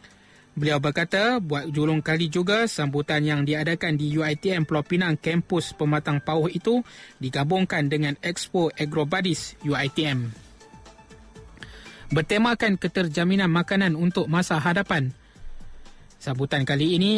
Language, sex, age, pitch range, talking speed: Malay, male, 20-39, 145-175 Hz, 110 wpm